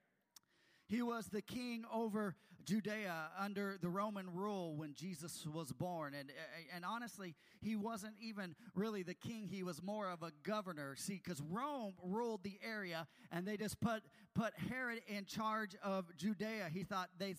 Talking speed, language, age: 165 wpm, English, 40-59